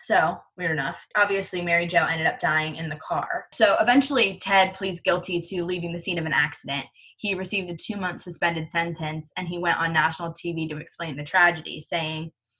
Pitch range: 160-185 Hz